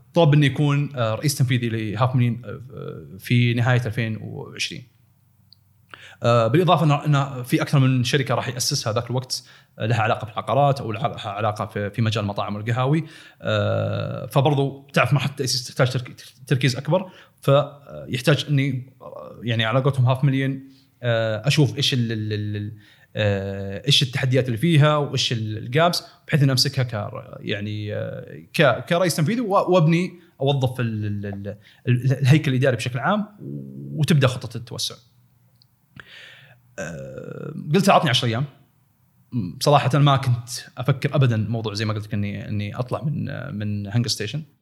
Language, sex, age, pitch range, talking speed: Arabic, male, 30-49, 115-145 Hz, 125 wpm